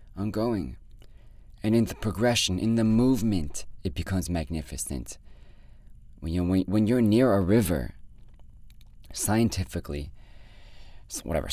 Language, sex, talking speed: English, male, 100 wpm